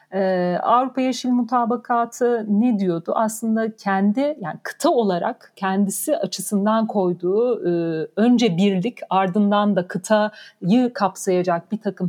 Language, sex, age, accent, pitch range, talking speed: Turkish, female, 50-69, native, 195-240 Hz, 115 wpm